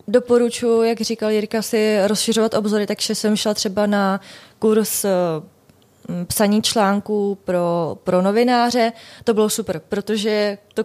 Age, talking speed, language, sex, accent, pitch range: 20-39, 125 wpm, Czech, female, native, 190-215 Hz